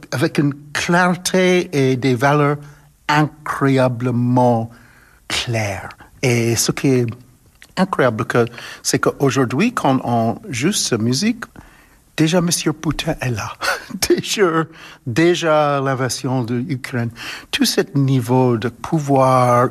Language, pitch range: French, 125-170 Hz